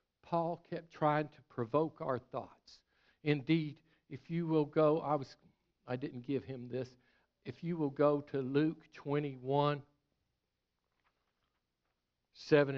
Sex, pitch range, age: male, 145-225 Hz, 60-79